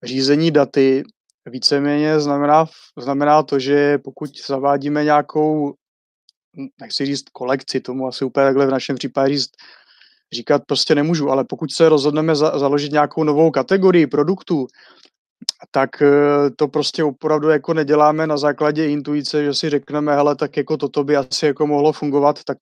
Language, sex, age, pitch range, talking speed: Czech, male, 30-49, 140-150 Hz, 145 wpm